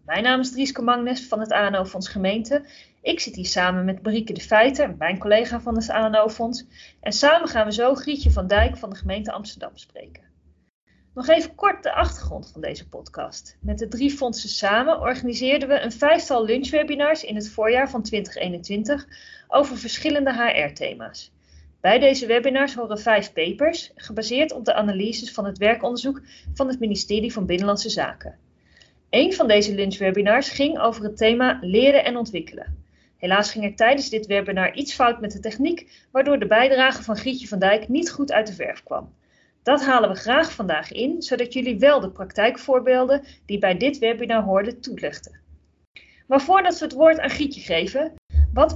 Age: 30-49